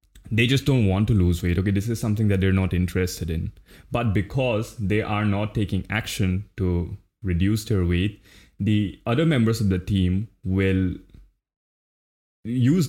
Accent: Indian